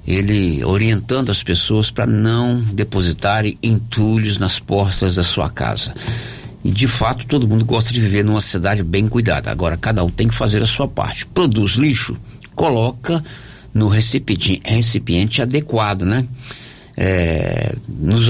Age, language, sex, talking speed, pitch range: 60-79, Portuguese, male, 145 wpm, 95-115 Hz